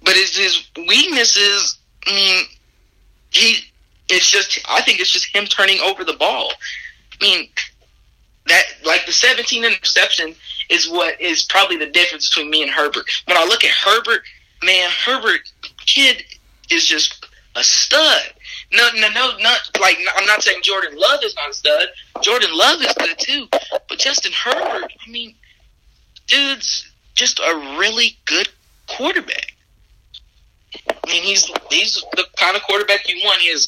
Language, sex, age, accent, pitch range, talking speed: English, male, 20-39, American, 170-235 Hz, 155 wpm